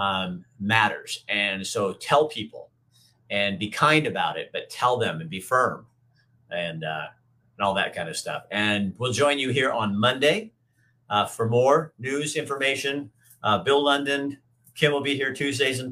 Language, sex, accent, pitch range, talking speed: English, male, American, 105-130 Hz, 175 wpm